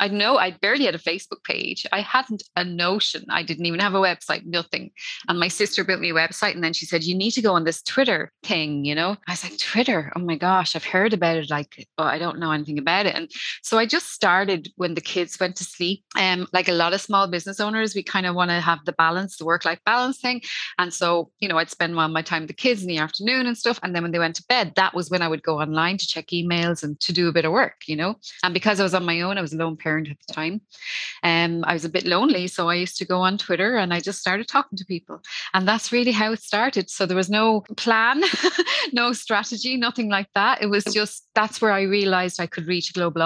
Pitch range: 170-210 Hz